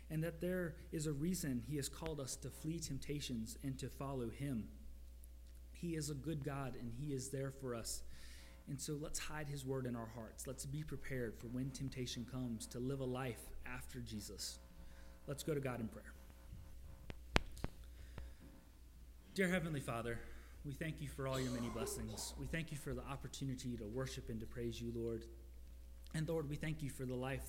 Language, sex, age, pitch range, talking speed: English, male, 30-49, 115-145 Hz, 190 wpm